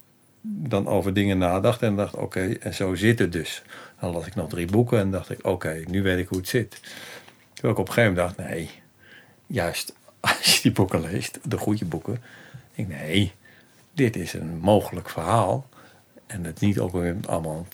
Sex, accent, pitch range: male, Dutch, 90-125 Hz